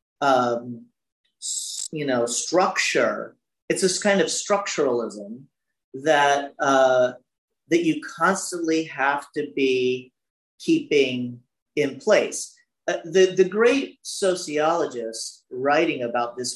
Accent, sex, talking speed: American, male, 100 wpm